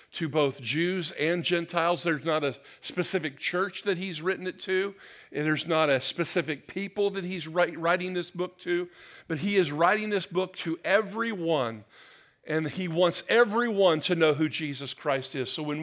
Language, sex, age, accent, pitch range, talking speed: English, male, 50-69, American, 150-180 Hz, 180 wpm